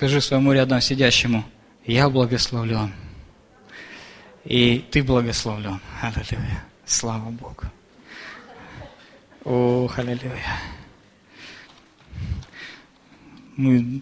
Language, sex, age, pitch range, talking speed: Russian, male, 20-39, 120-150 Hz, 65 wpm